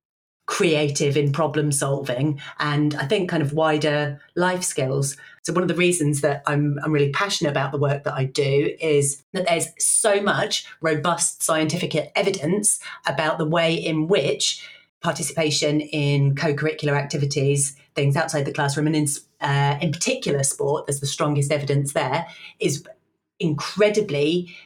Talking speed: 150 wpm